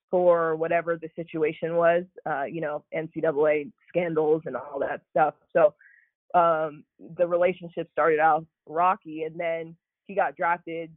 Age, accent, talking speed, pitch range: 20-39, American, 140 wpm, 160-180 Hz